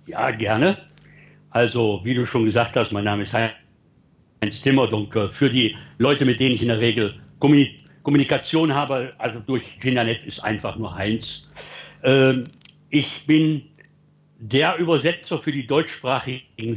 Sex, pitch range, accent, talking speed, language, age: male, 115-145 Hz, German, 135 wpm, German, 60-79